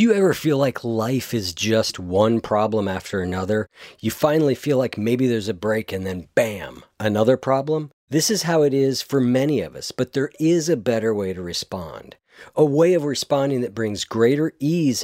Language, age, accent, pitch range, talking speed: English, 40-59, American, 110-145 Hz, 200 wpm